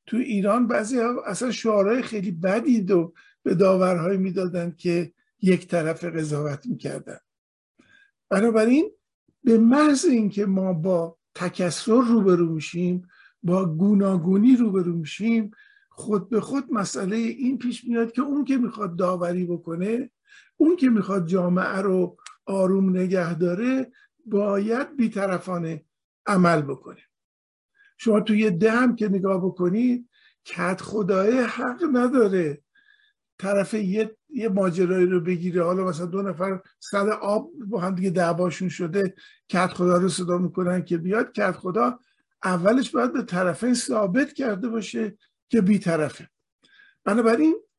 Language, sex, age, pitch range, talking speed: Persian, male, 50-69, 185-245 Hz, 135 wpm